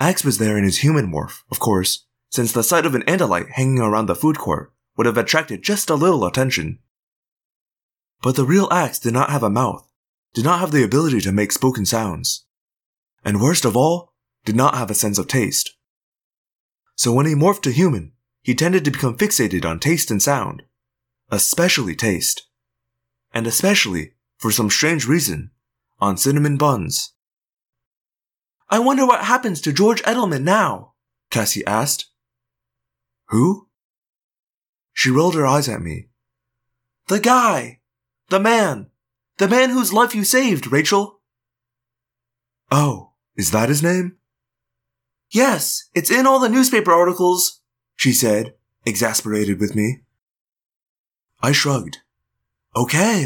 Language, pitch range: English, 115-170 Hz